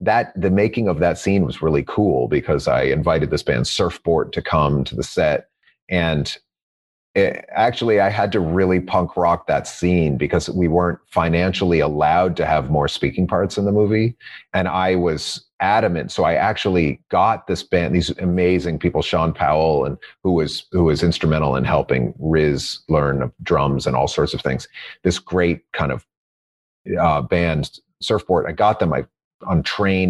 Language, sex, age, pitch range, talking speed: English, male, 30-49, 70-95 Hz, 175 wpm